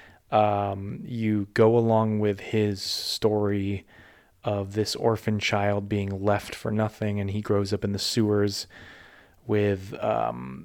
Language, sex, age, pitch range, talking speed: English, male, 20-39, 105-130 Hz, 135 wpm